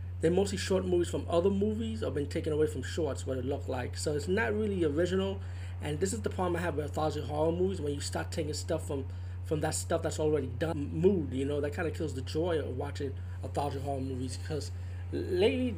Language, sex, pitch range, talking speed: English, male, 85-95 Hz, 235 wpm